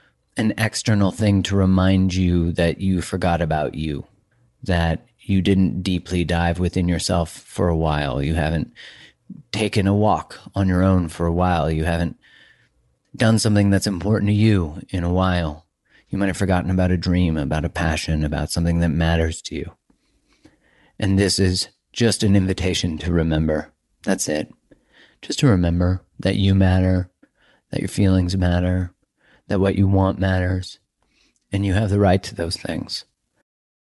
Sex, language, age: male, English, 30-49